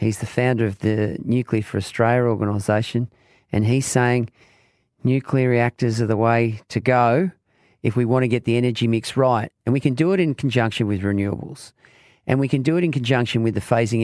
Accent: Australian